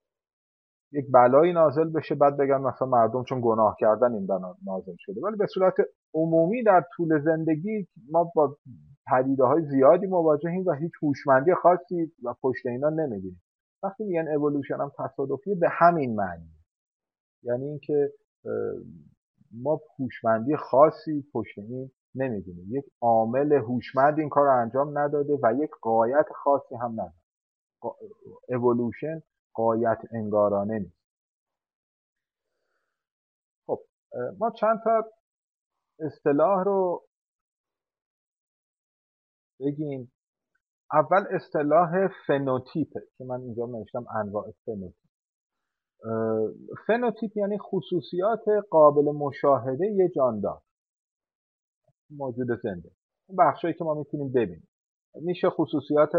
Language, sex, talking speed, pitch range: Persian, male, 105 wpm, 125-175 Hz